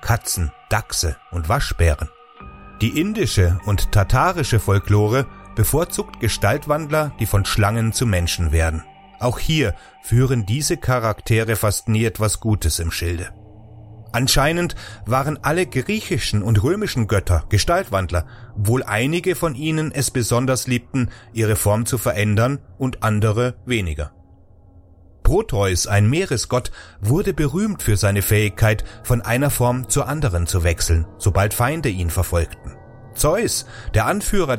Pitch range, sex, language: 100-130 Hz, male, German